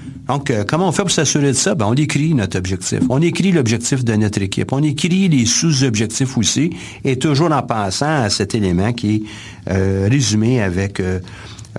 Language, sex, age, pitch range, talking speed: French, male, 50-69, 105-135 Hz, 195 wpm